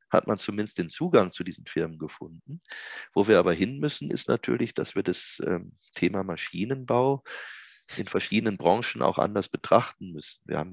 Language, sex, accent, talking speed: German, male, German, 175 wpm